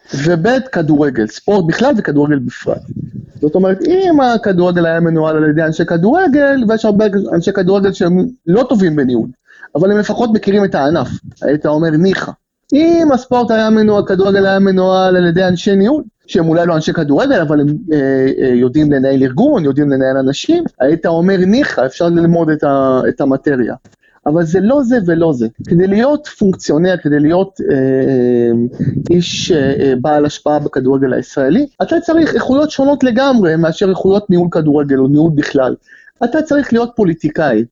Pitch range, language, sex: 150-225 Hz, Hebrew, male